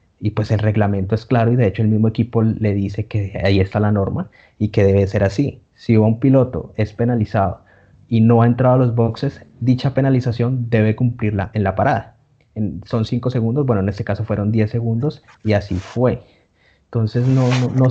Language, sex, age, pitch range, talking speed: Spanish, male, 30-49, 105-125 Hz, 205 wpm